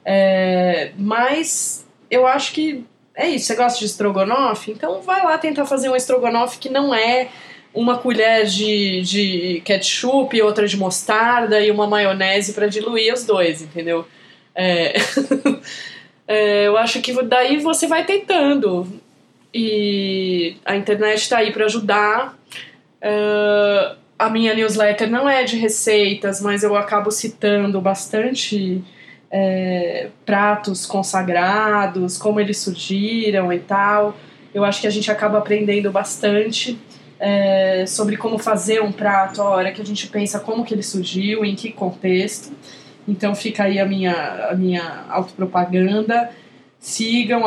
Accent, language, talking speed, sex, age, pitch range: Brazilian, Portuguese, 140 wpm, female, 20-39, 195-230 Hz